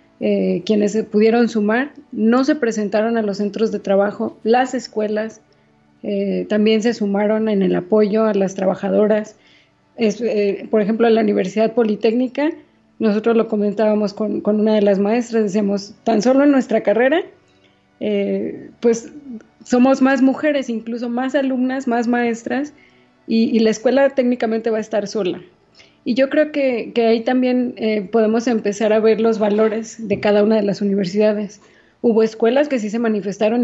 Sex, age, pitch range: female, 20-39, 215-255 Hz